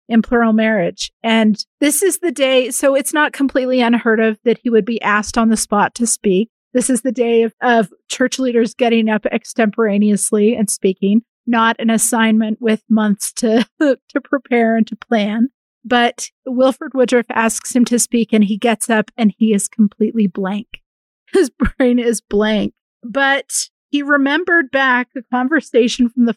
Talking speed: 175 wpm